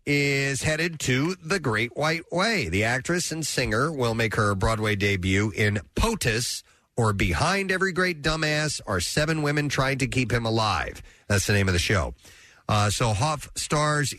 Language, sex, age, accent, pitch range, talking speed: English, male, 40-59, American, 100-140 Hz, 175 wpm